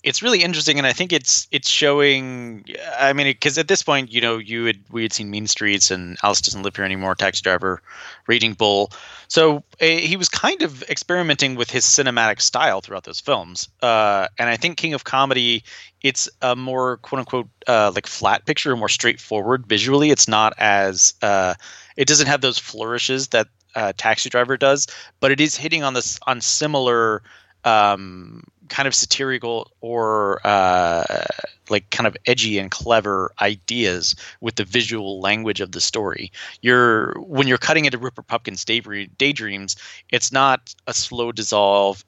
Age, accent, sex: 30-49, American, male